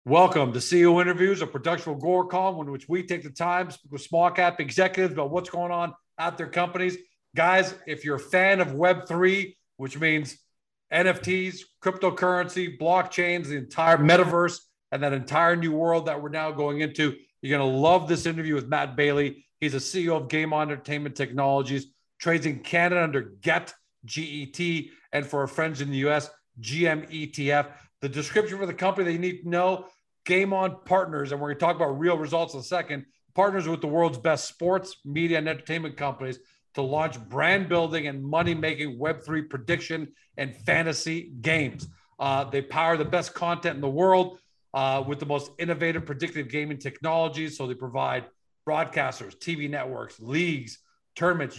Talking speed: 175 wpm